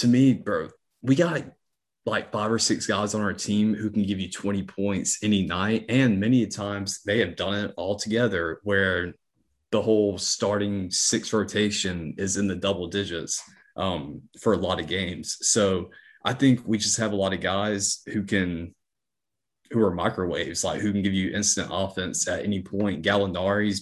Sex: male